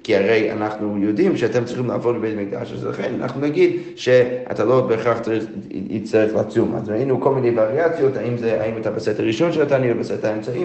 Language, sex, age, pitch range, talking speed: Hebrew, male, 30-49, 110-135 Hz, 185 wpm